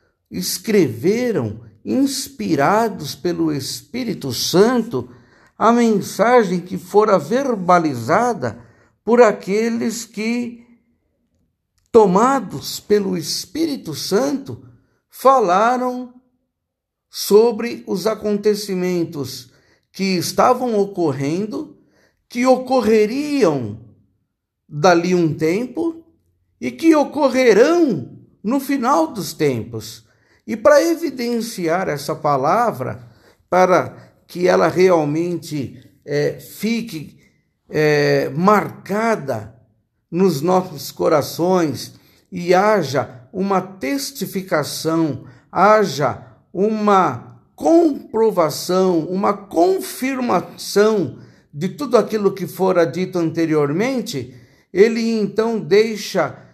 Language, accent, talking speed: Portuguese, Brazilian, 75 wpm